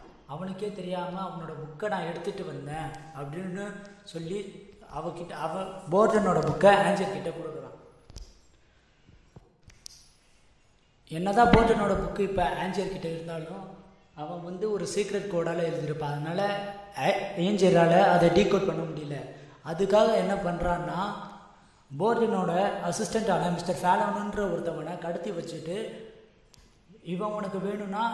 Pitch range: 165-200 Hz